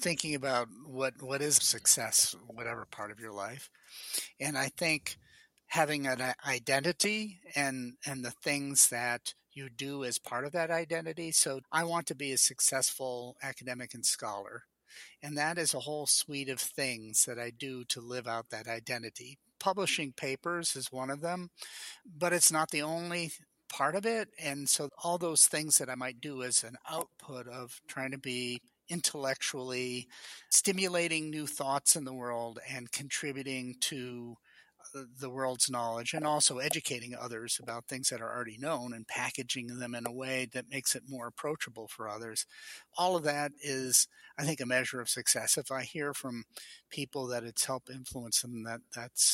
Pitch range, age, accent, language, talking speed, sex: 125-150 Hz, 50-69, American, English, 175 wpm, male